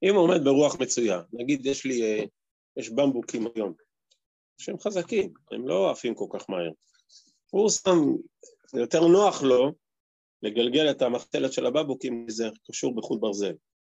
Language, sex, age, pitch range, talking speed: Hebrew, male, 30-49, 115-175 Hz, 145 wpm